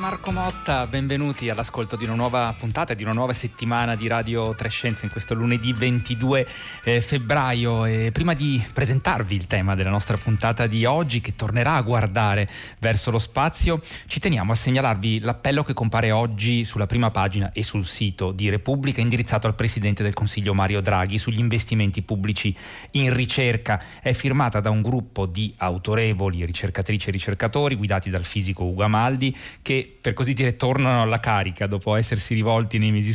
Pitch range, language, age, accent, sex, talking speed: 105-120 Hz, Italian, 30-49, native, male, 170 wpm